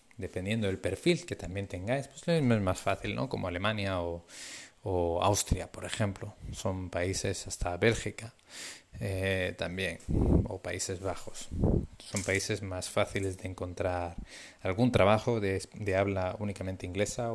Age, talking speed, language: 20-39, 140 wpm, Spanish